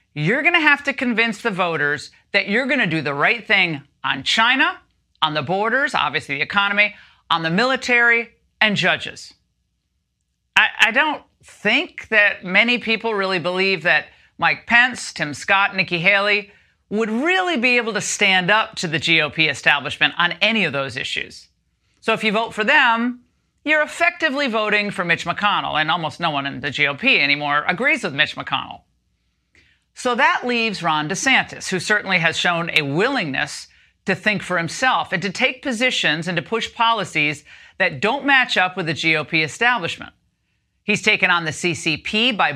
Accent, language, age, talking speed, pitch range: American, English, 40-59, 170 wpm, 165-235 Hz